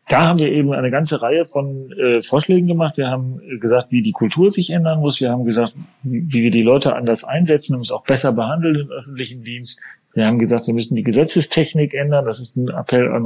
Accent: German